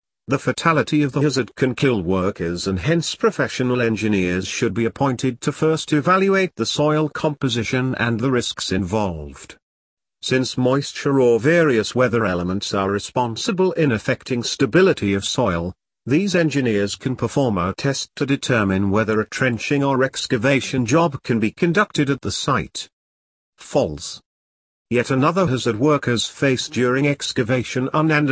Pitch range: 105-145 Hz